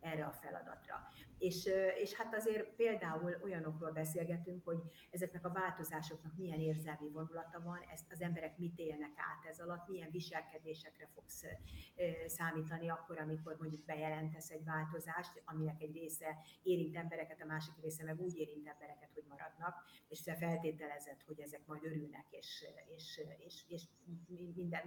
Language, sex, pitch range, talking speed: Hungarian, female, 155-180 Hz, 145 wpm